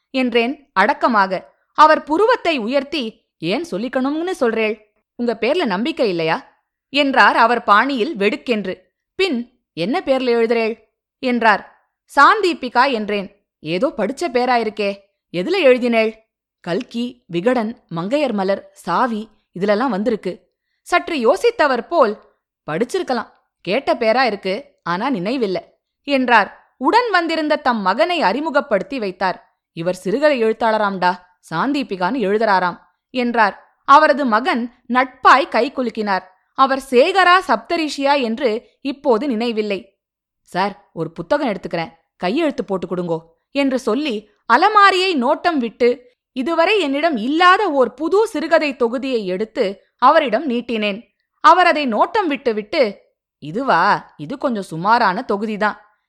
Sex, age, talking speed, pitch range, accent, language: female, 20-39, 105 wpm, 205-285 Hz, native, Tamil